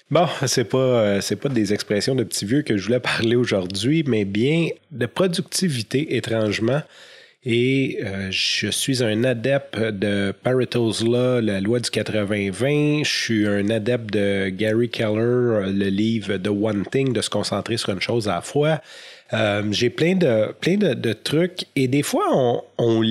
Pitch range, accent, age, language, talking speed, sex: 105-140 Hz, Canadian, 30-49, French, 175 wpm, male